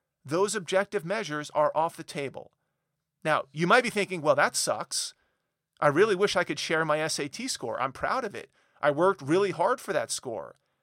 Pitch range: 140-185 Hz